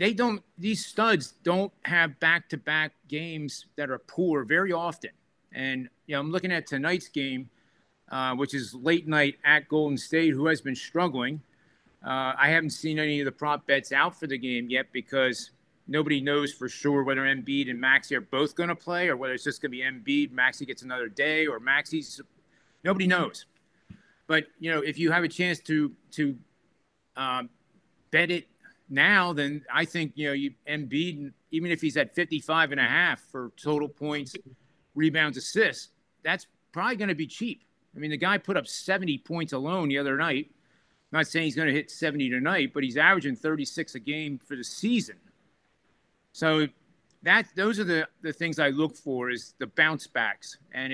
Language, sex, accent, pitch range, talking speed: English, male, American, 135-165 Hz, 195 wpm